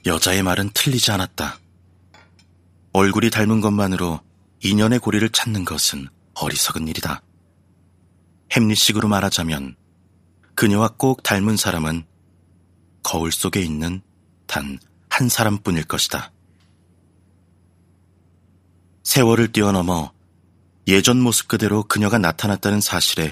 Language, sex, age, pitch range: Korean, male, 30-49, 85-100 Hz